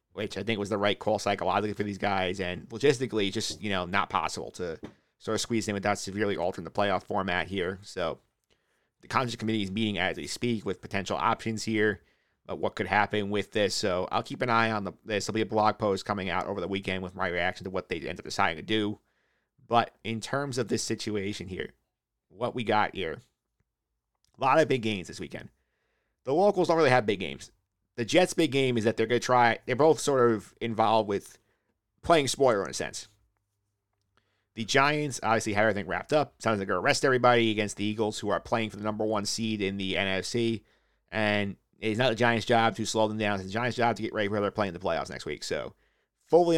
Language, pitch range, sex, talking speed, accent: English, 100-120 Hz, male, 230 wpm, American